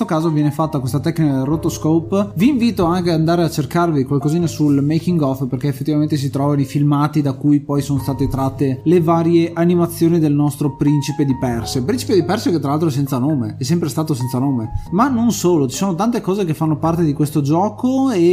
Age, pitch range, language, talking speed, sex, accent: 20-39, 140-175 Hz, Italian, 215 wpm, male, native